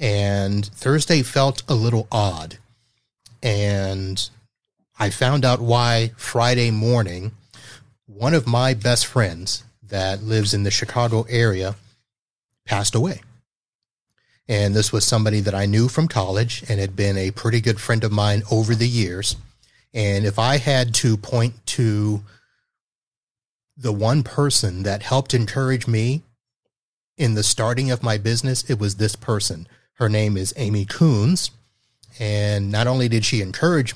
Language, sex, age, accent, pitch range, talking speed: English, male, 30-49, American, 105-120 Hz, 145 wpm